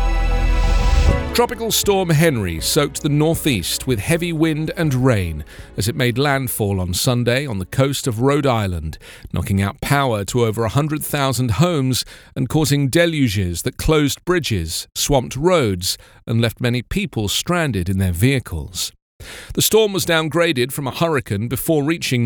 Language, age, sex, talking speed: English, 40-59, male, 150 wpm